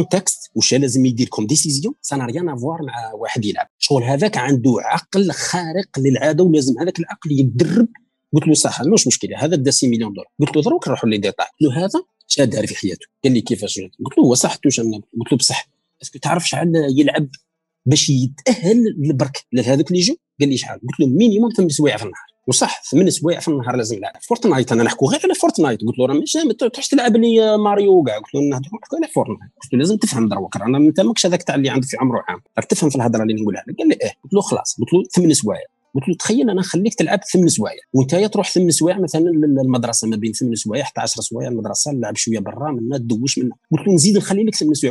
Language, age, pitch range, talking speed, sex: Arabic, 40-59, 130-195 Hz, 215 wpm, male